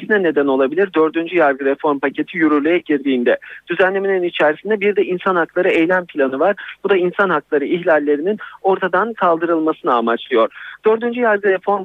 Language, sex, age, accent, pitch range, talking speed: Turkish, male, 50-69, native, 145-205 Hz, 145 wpm